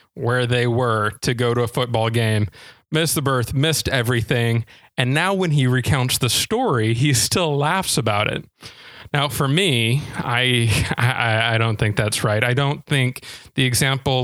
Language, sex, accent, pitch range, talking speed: English, male, American, 115-150 Hz, 175 wpm